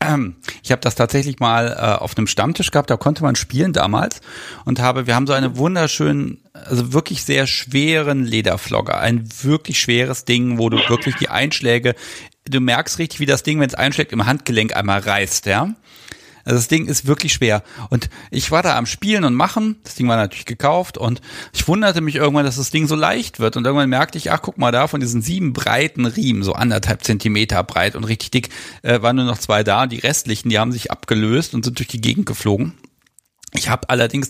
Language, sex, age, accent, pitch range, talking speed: German, male, 40-59, German, 115-145 Hz, 210 wpm